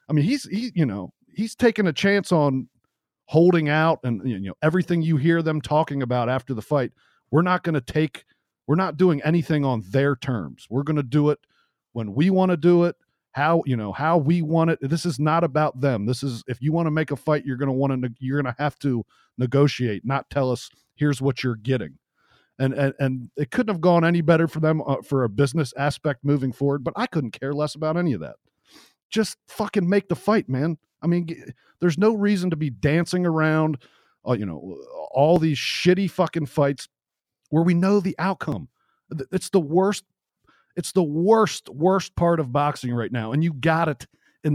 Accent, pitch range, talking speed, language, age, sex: American, 130-170 Hz, 215 wpm, English, 40-59, male